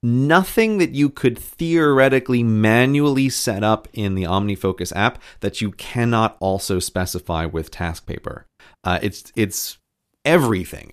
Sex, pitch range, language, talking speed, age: male, 90-120 Hz, English, 130 wpm, 30-49